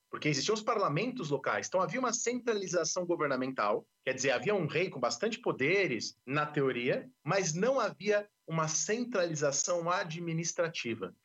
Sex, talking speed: male, 140 wpm